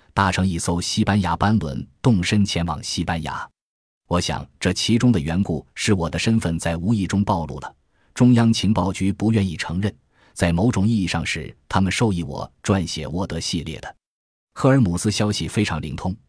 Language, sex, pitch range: Chinese, male, 85-115 Hz